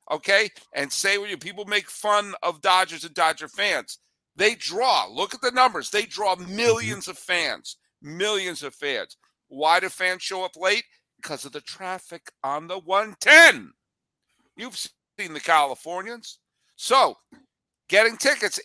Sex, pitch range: male, 195-260 Hz